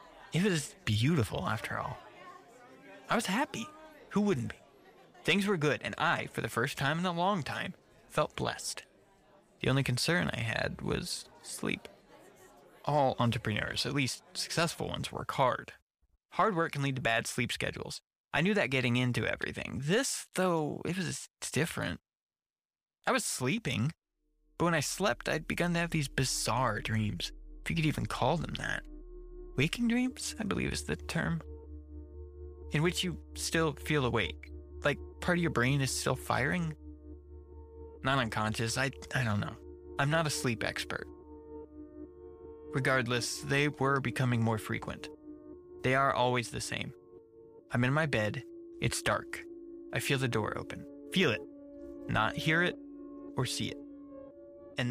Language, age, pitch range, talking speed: English, 20-39, 110-170 Hz, 155 wpm